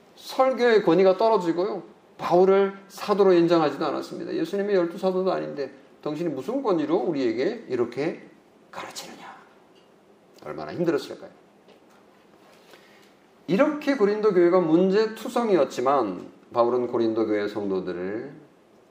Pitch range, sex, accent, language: 165-220 Hz, male, native, Korean